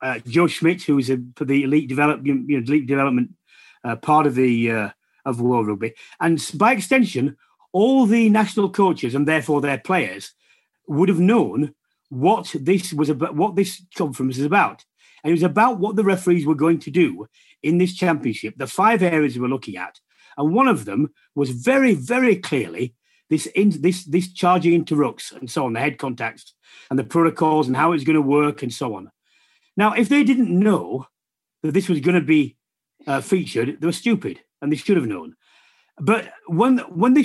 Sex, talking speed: male, 200 wpm